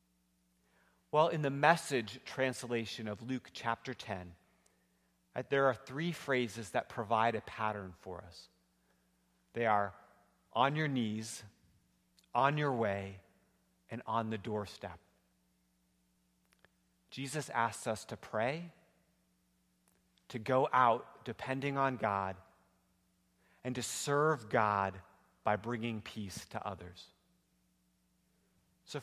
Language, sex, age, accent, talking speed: English, male, 40-59, American, 105 wpm